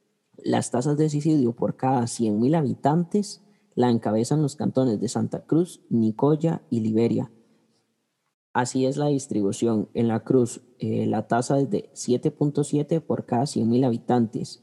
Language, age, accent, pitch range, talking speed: Spanish, 10-29, Colombian, 115-150 Hz, 145 wpm